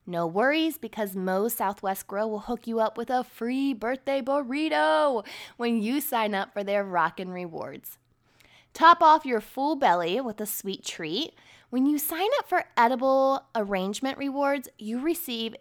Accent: American